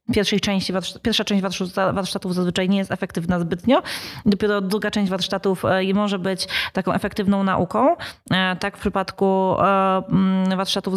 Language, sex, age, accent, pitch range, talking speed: Polish, female, 20-39, native, 170-190 Hz, 115 wpm